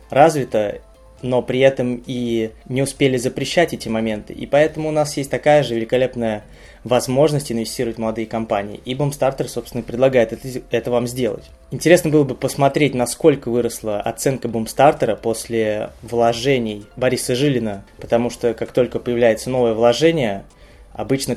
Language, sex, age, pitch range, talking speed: Russian, male, 20-39, 115-135 Hz, 145 wpm